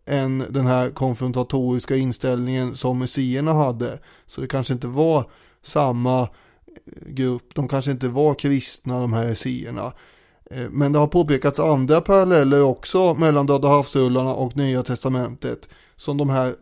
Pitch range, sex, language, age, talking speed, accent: 125-145 Hz, male, English, 20-39, 140 wpm, Swedish